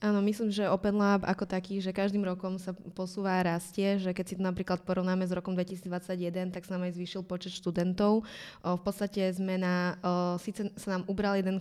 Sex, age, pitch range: female, 20-39, 180-195 Hz